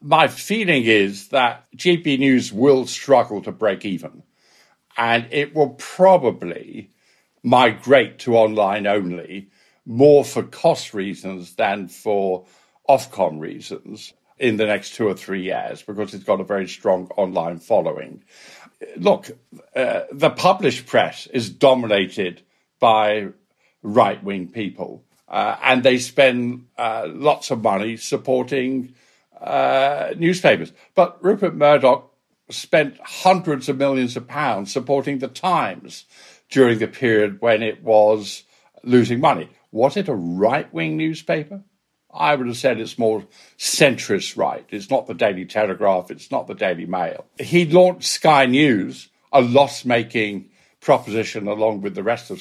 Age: 60-79